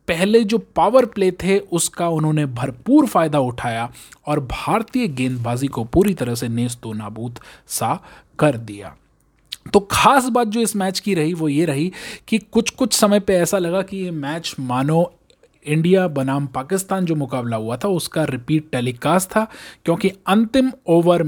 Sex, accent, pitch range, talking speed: male, native, 140-195 Hz, 165 wpm